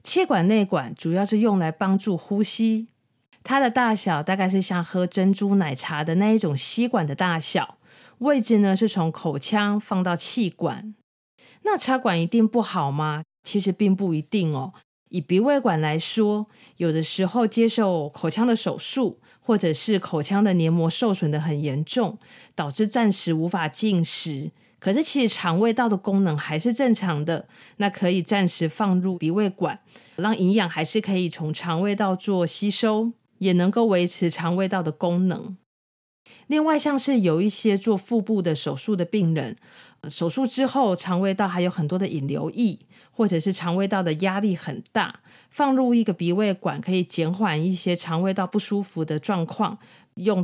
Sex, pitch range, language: female, 170-215 Hz, Chinese